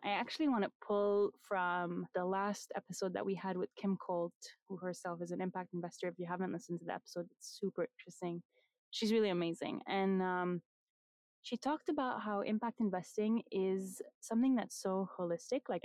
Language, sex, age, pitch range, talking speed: English, female, 20-39, 185-215 Hz, 180 wpm